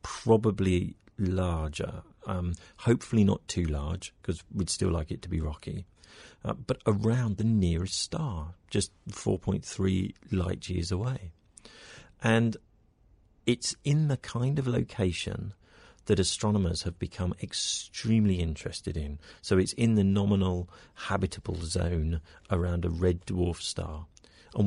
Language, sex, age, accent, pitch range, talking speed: English, male, 40-59, British, 85-105 Hz, 130 wpm